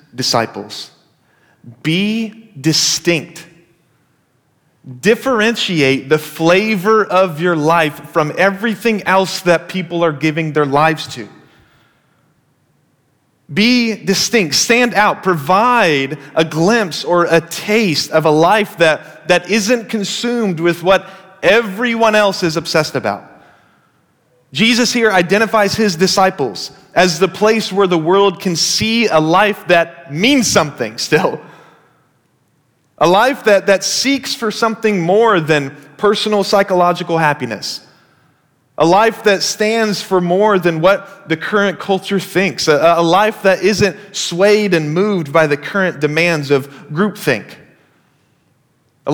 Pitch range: 155-205 Hz